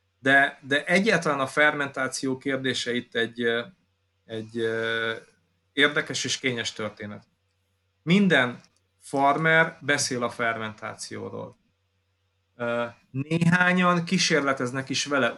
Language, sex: Hungarian, male